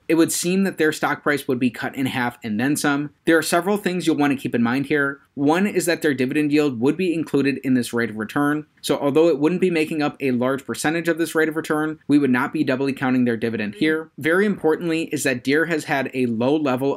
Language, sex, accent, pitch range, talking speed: English, male, American, 130-165 Hz, 260 wpm